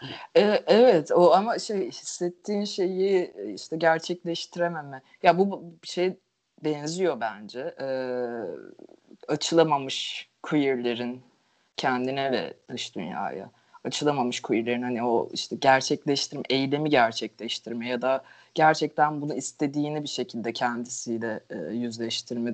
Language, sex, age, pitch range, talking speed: Turkish, female, 30-49, 125-180 Hz, 105 wpm